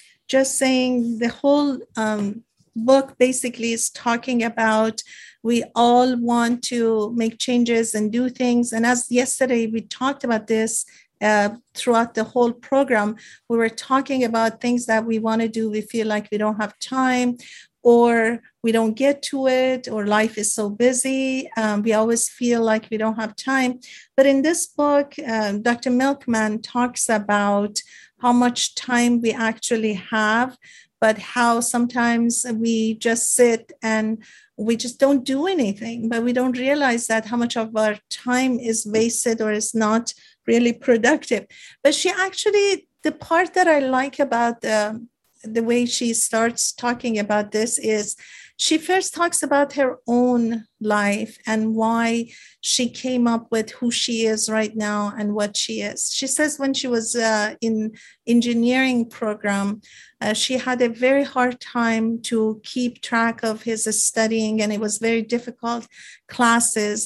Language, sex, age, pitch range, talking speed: English, female, 50-69, 220-250 Hz, 160 wpm